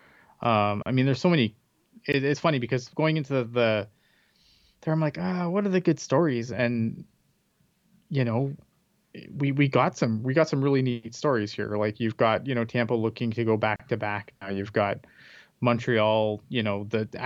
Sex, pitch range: male, 110-145 Hz